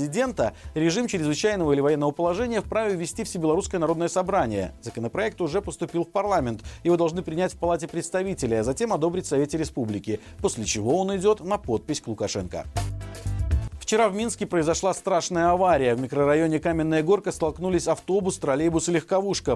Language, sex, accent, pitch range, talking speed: Russian, male, native, 135-185 Hz, 155 wpm